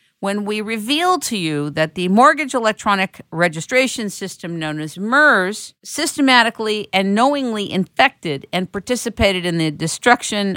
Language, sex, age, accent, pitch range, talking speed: English, female, 50-69, American, 175-245 Hz, 130 wpm